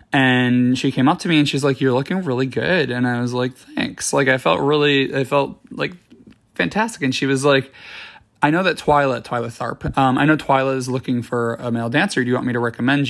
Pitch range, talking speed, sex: 125-150 Hz, 240 wpm, male